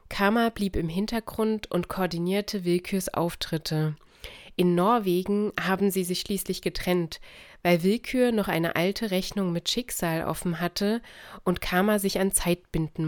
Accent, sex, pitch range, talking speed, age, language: German, female, 170-200 Hz, 140 wpm, 30-49, German